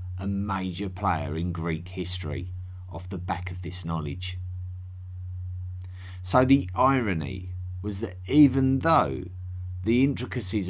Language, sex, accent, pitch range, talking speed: English, male, British, 90-110 Hz, 120 wpm